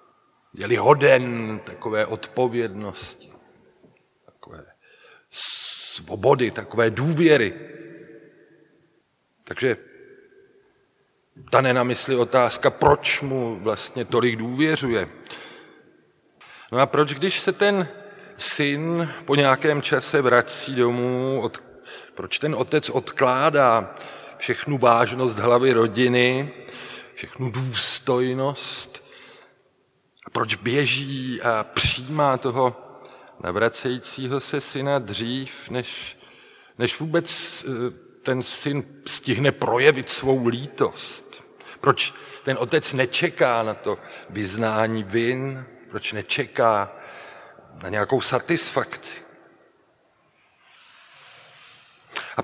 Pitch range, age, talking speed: 120-155 Hz, 40-59, 80 wpm